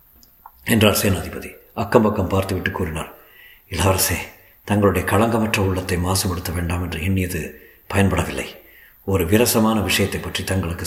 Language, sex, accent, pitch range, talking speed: Tamil, male, native, 90-105 Hz, 115 wpm